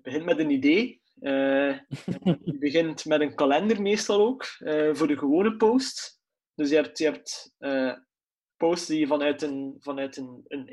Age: 20-39